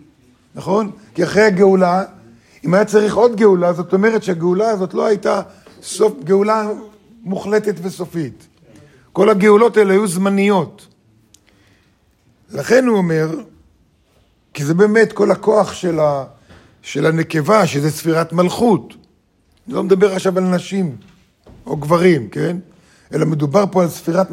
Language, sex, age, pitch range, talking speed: Hebrew, male, 50-69, 155-205 Hz, 130 wpm